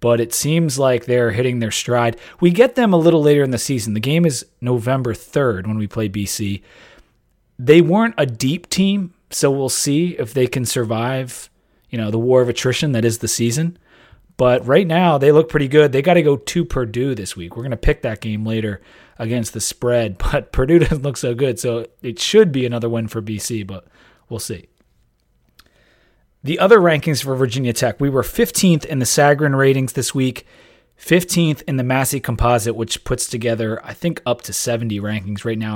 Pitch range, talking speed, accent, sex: 115-150 Hz, 205 wpm, American, male